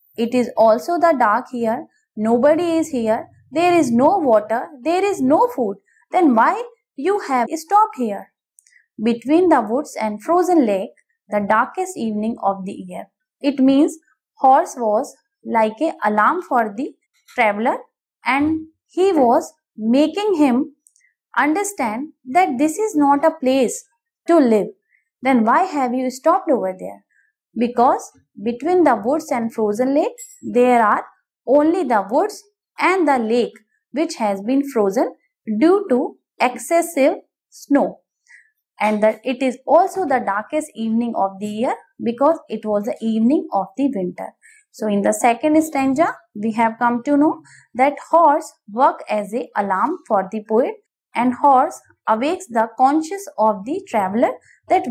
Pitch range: 225-320 Hz